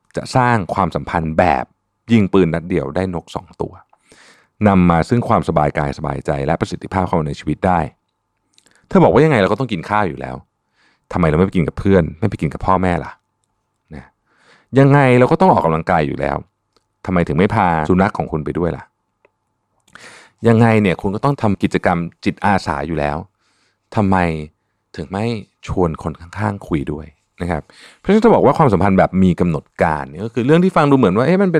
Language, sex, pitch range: Thai, male, 80-115 Hz